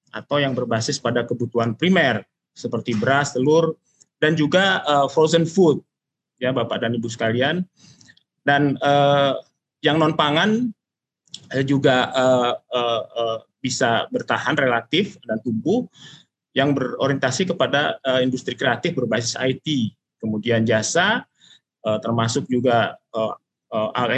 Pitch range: 125-155 Hz